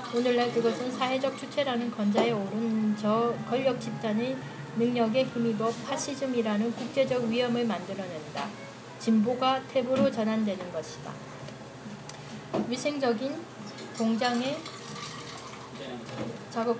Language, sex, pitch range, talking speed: English, female, 215-250 Hz, 80 wpm